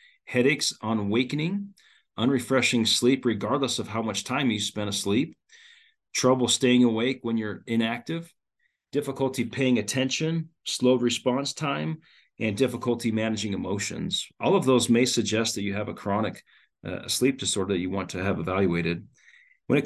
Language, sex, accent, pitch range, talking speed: English, male, American, 105-130 Hz, 150 wpm